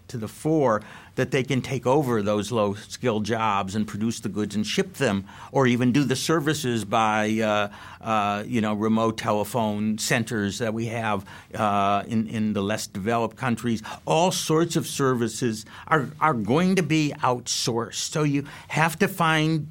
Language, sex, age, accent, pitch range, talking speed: English, male, 50-69, American, 115-160 Hz, 175 wpm